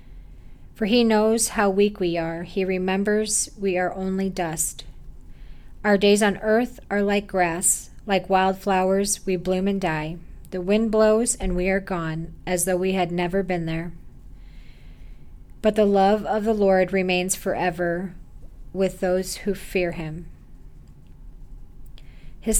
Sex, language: female, English